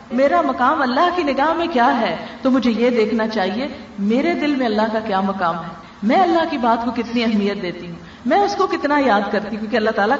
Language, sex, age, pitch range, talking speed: Urdu, female, 50-69, 220-290 Hz, 230 wpm